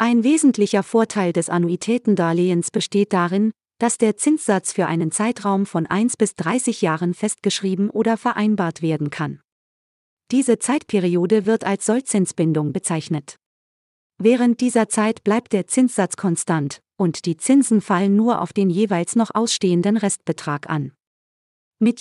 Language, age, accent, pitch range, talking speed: German, 40-59, German, 170-225 Hz, 135 wpm